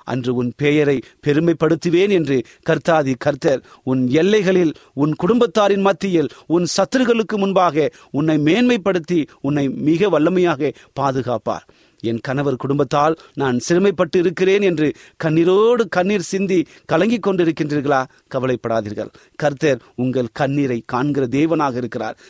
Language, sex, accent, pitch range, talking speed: Tamil, male, native, 125-175 Hz, 110 wpm